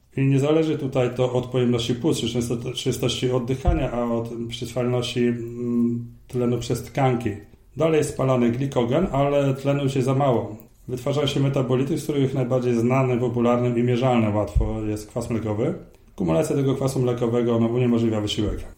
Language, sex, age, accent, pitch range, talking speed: Polish, male, 30-49, native, 110-130 Hz, 155 wpm